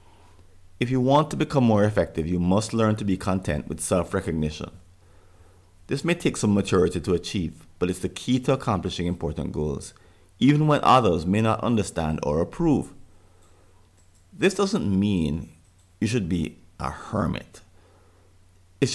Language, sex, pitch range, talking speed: English, male, 90-110 Hz, 150 wpm